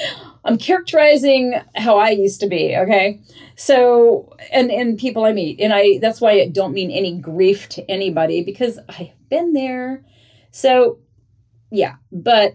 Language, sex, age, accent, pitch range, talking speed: English, female, 40-59, American, 150-190 Hz, 155 wpm